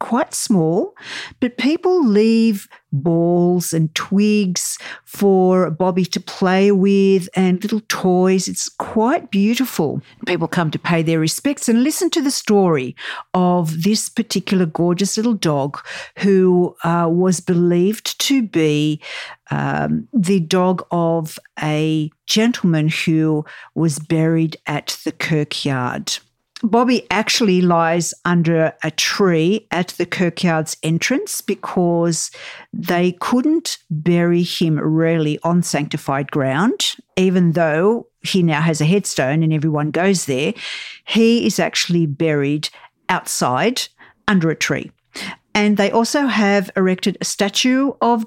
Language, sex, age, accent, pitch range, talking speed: English, female, 50-69, Australian, 160-215 Hz, 125 wpm